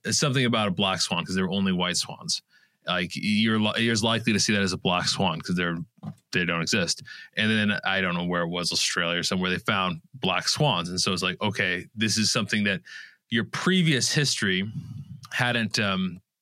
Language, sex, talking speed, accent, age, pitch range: English, male, 195 wpm, American, 20-39, 95-125 Hz